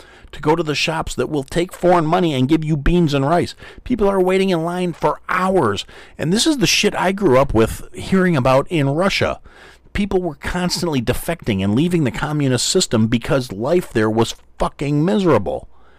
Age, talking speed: 40-59, 190 wpm